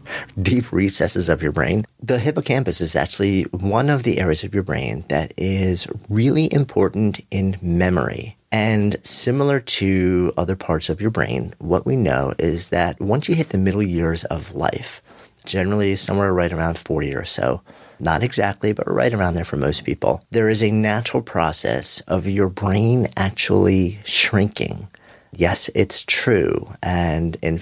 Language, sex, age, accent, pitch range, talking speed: English, male, 40-59, American, 85-110 Hz, 160 wpm